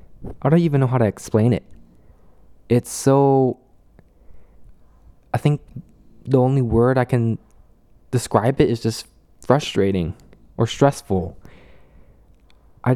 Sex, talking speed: male, 115 wpm